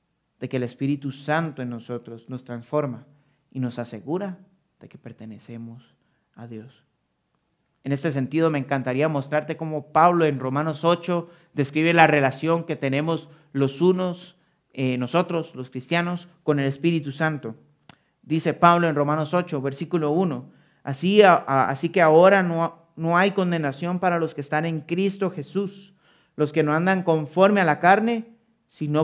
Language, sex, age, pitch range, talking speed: Spanish, male, 40-59, 140-175 Hz, 155 wpm